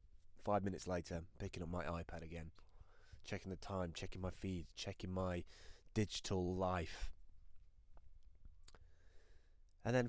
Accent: British